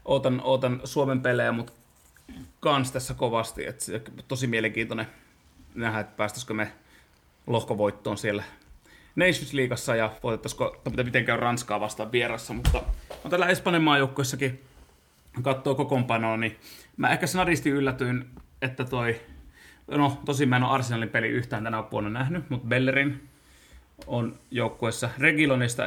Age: 30-49